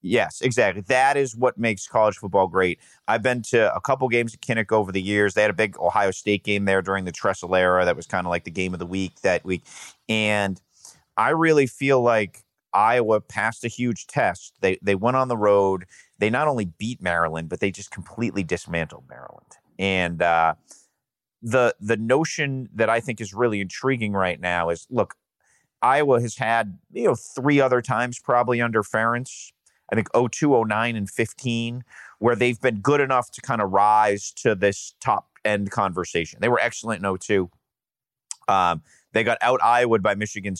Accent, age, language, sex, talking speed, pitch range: American, 30-49, English, male, 190 wpm, 95-120 Hz